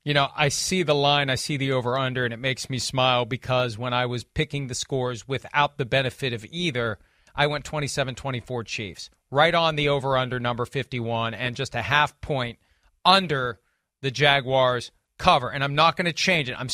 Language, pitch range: English, 135-185 Hz